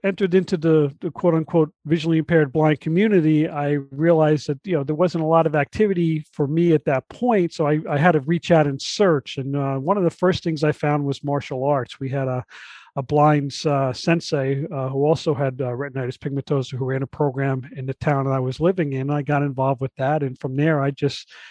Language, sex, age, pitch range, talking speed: English, male, 40-59, 135-165 Hz, 230 wpm